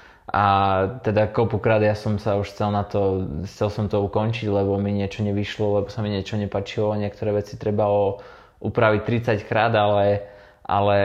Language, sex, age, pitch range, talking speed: Czech, male, 20-39, 100-110 Hz, 170 wpm